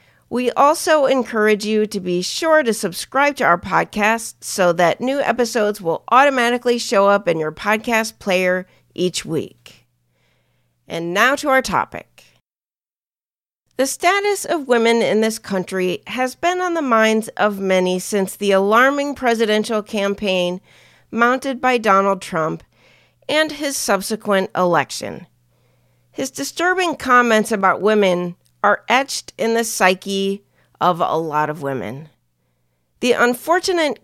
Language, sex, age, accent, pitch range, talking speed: English, female, 40-59, American, 180-245 Hz, 130 wpm